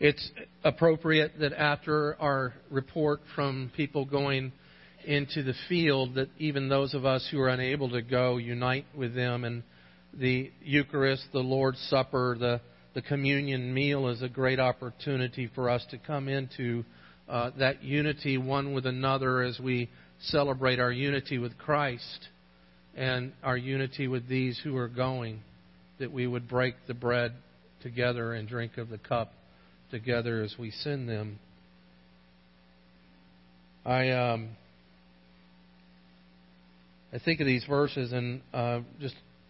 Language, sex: English, male